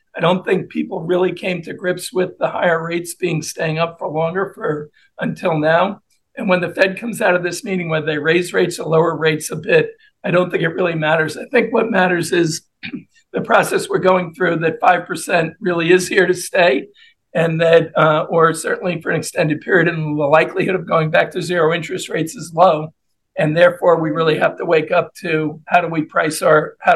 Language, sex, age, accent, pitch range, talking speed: English, male, 50-69, American, 165-190 Hz, 215 wpm